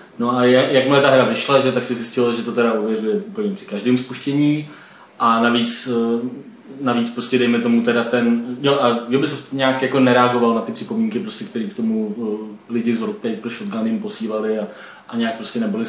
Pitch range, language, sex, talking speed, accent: 120-130 Hz, Czech, male, 190 wpm, native